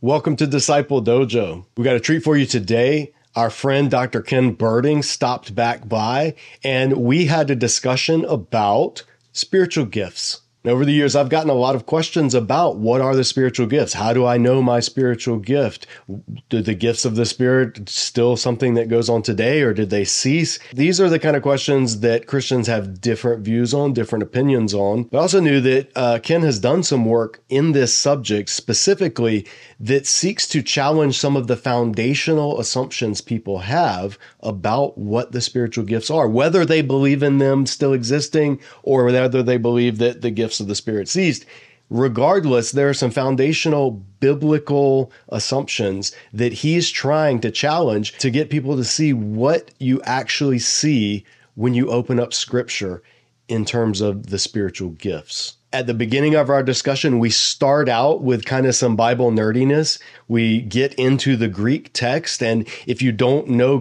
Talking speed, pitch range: 175 wpm, 115-140 Hz